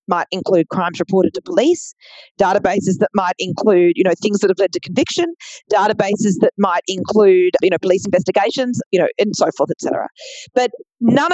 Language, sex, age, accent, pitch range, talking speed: English, female, 40-59, Australian, 195-250 Hz, 185 wpm